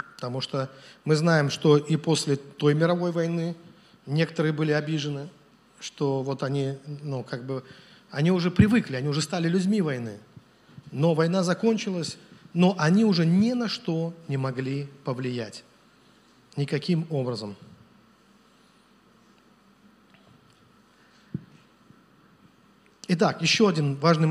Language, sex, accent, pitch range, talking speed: Russian, male, native, 145-205 Hz, 110 wpm